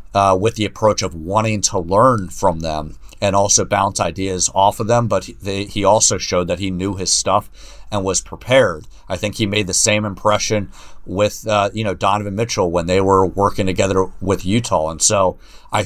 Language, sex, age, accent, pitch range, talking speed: English, male, 50-69, American, 95-110 Hz, 205 wpm